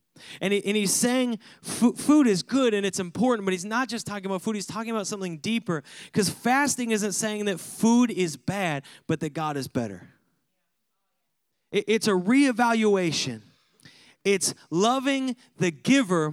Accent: American